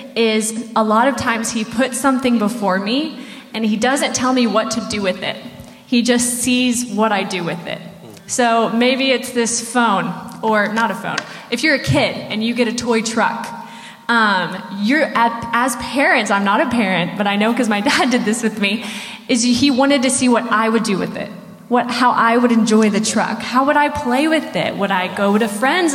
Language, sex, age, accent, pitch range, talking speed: English, female, 20-39, American, 220-260 Hz, 215 wpm